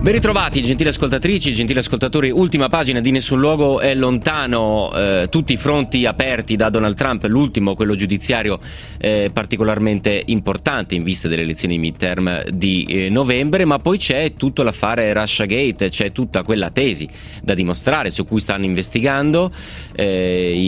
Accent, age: native, 30-49